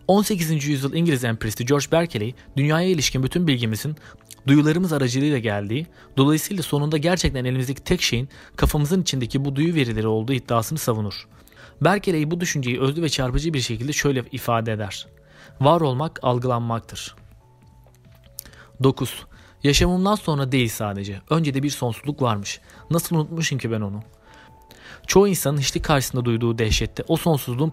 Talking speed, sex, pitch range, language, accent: 140 wpm, male, 115-155 Hz, Turkish, native